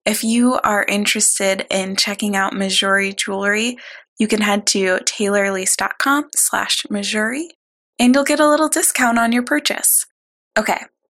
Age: 20-39